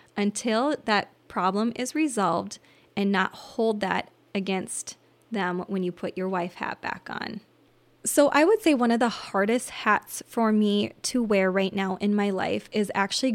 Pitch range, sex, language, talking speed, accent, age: 195-230 Hz, female, English, 175 wpm, American, 20-39